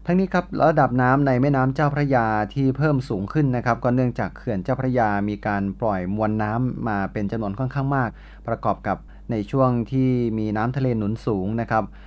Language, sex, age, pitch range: Thai, male, 20-39, 105-130 Hz